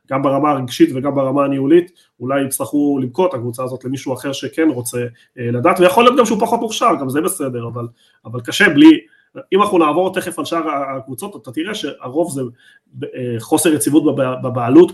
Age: 30-49